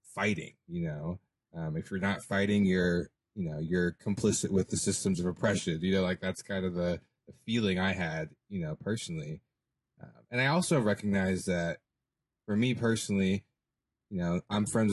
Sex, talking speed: male, 180 wpm